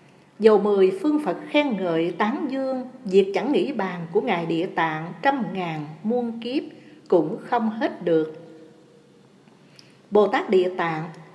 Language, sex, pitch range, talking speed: Vietnamese, female, 175-260 Hz, 150 wpm